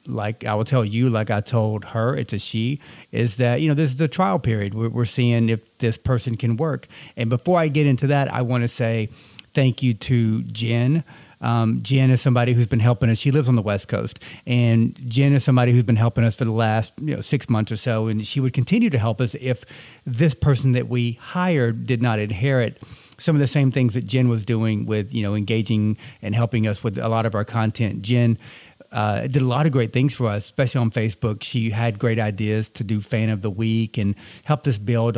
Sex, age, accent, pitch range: male, 40-59, American, 110-130 Hz